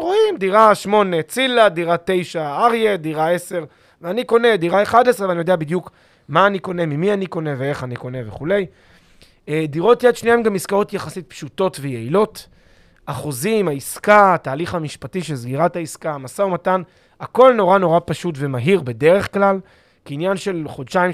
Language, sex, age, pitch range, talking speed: Hebrew, male, 30-49, 140-195 Hz, 155 wpm